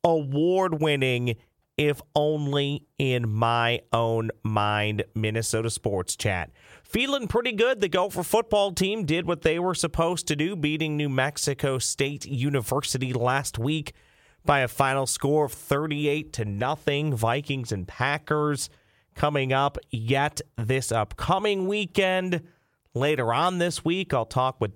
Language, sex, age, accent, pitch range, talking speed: English, male, 40-59, American, 115-155 Hz, 135 wpm